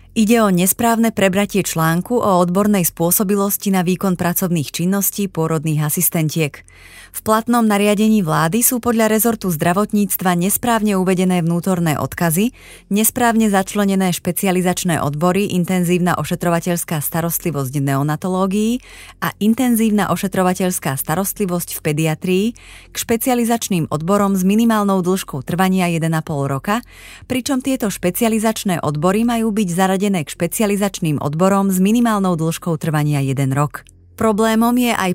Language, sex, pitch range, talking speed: Slovak, female, 165-215 Hz, 115 wpm